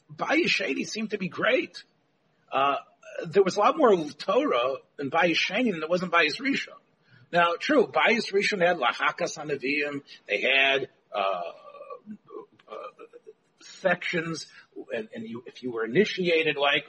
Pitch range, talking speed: 150-215 Hz, 135 wpm